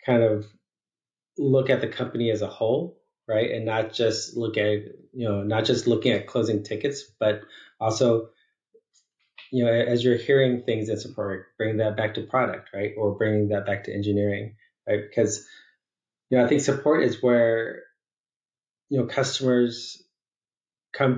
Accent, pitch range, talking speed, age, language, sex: American, 105-125 Hz, 165 wpm, 20-39, English, male